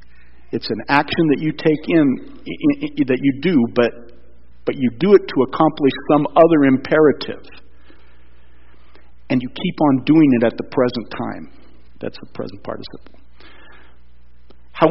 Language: English